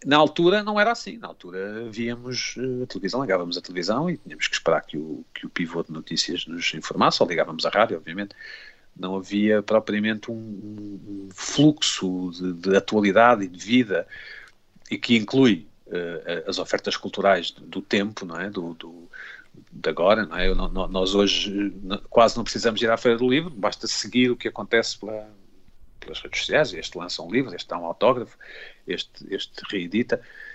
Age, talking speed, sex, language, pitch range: 50-69, 165 wpm, male, Portuguese, 95-130 Hz